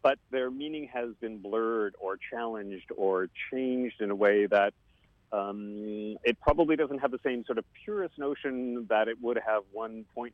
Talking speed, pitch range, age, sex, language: 180 wpm, 105-130 Hz, 40-59, male, English